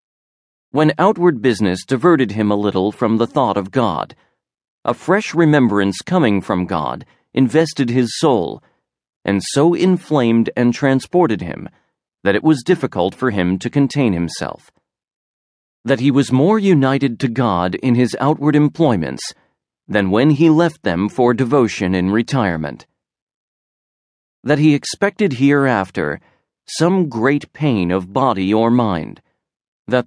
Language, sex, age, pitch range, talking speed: English, male, 40-59, 105-150 Hz, 135 wpm